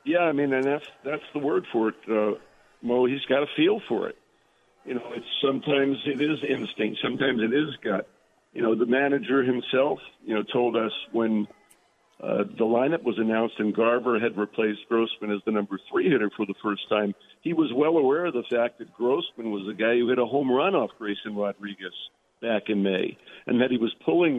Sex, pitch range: male, 110-135 Hz